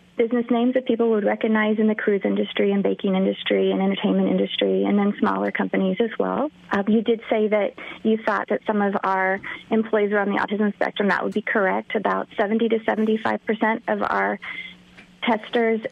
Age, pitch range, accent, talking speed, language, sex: 40-59, 180-220 Hz, American, 190 wpm, English, female